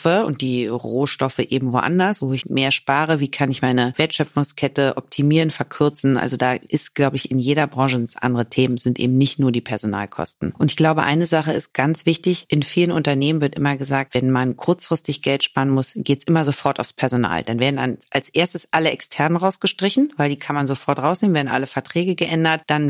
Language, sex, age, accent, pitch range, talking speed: German, female, 40-59, German, 130-155 Hz, 205 wpm